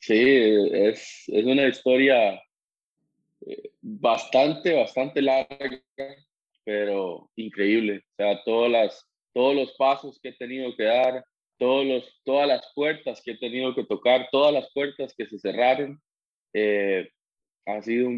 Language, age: Spanish, 20-39